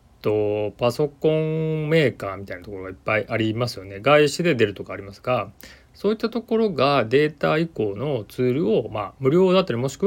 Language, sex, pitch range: Japanese, male, 100-155 Hz